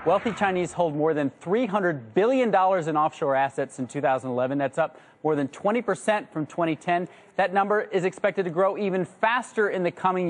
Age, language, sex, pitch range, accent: 30-49, Korean, male, 150-210 Hz, American